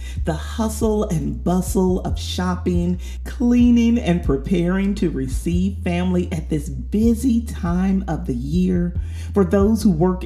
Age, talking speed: 40-59, 135 wpm